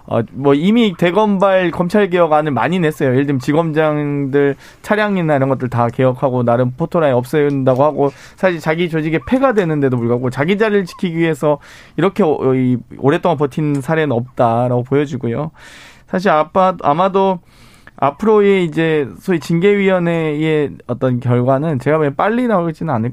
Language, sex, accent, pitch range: Korean, male, native, 130-175 Hz